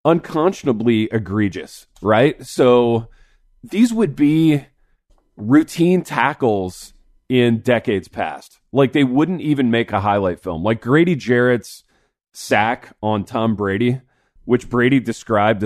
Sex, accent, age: male, American, 20-39